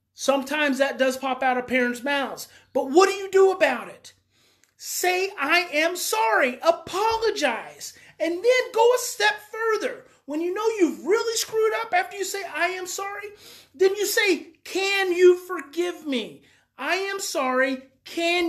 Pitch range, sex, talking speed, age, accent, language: 265-365 Hz, male, 160 wpm, 30-49, American, English